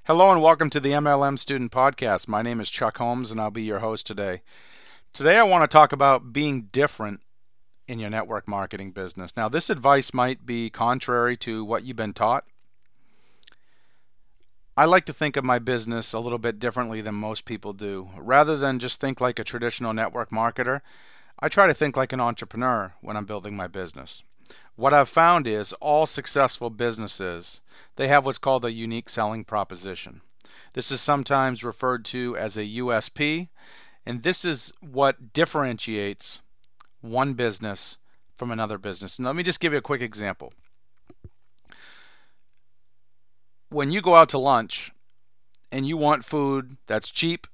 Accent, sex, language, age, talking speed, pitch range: American, male, English, 40-59, 165 wpm, 110-140 Hz